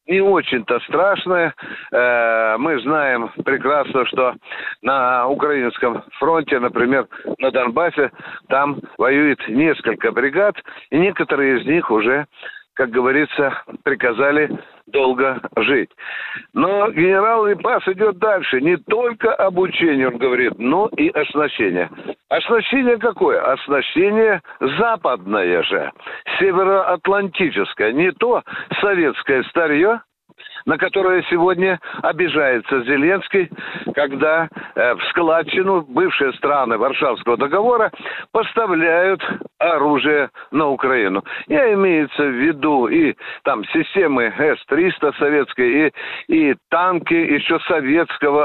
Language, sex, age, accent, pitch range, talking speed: Russian, male, 60-79, native, 145-230 Hz, 100 wpm